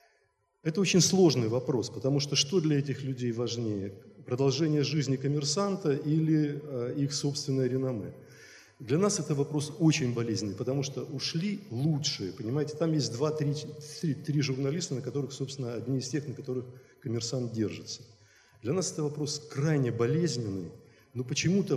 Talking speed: 150 wpm